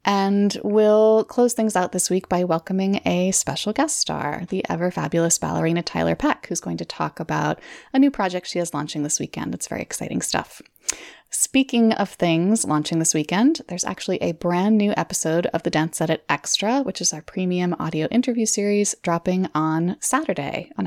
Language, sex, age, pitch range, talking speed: English, female, 20-39, 170-210 Hz, 185 wpm